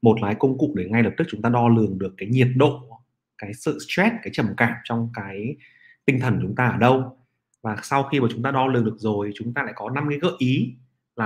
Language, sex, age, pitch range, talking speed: Vietnamese, male, 30-49, 110-140 Hz, 260 wpm